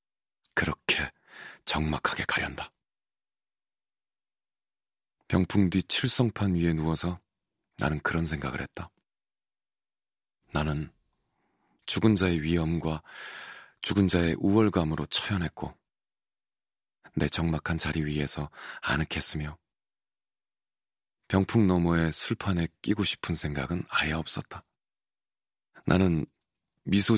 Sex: male